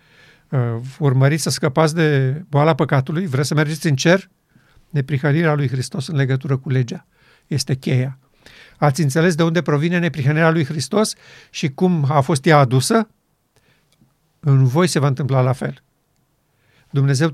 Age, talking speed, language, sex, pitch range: 50-69, 145 wpm, Romanian, male, 140-170 Hz